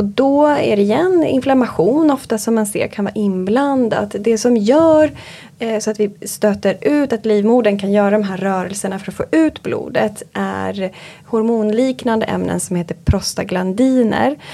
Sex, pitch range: female, 195-240 Hz